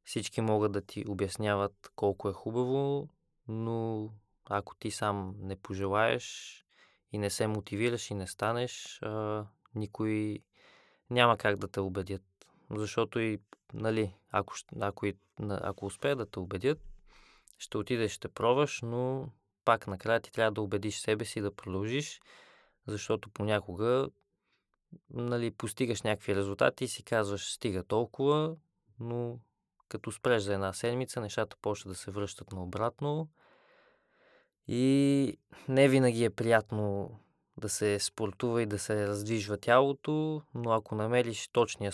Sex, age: male, 20-39